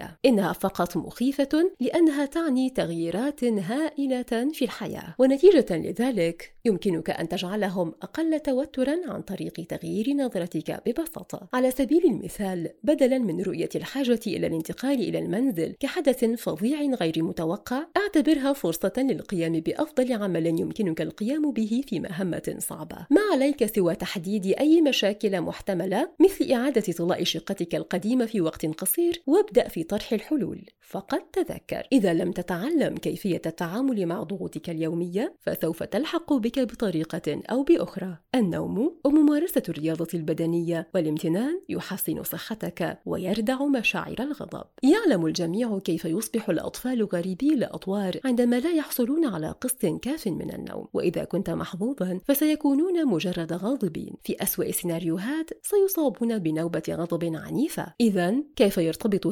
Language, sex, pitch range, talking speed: Arabic, female, 175-280 Hz, 125 wpm